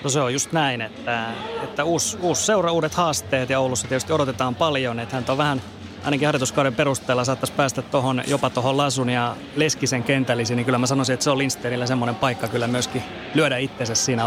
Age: 30-49